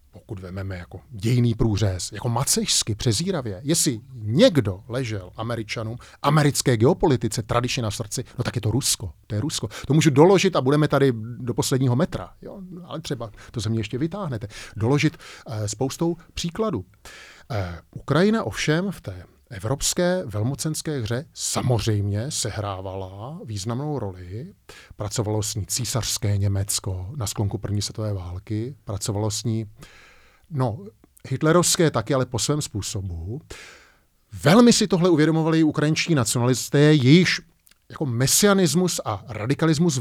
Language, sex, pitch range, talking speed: Czech, male, 110-155 Hz, 135 wpm